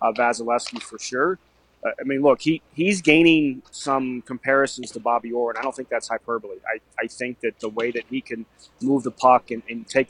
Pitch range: 120-140 Hz